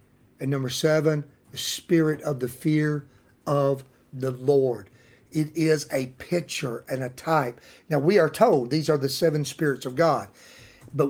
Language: English